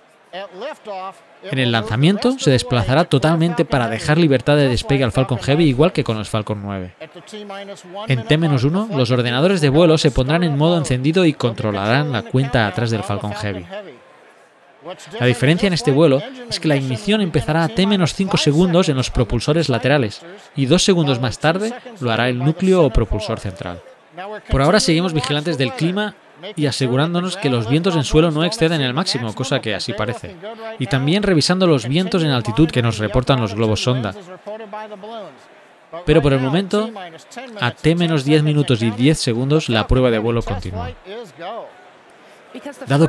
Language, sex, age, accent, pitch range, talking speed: Spanish, male, 20-39, Spanish, 125-170 Hz, 165 wpm